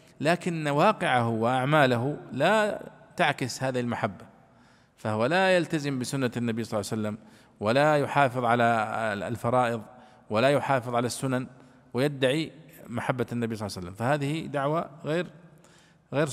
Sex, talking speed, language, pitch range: male, 130 wpm, Arabic, 130-180 Hz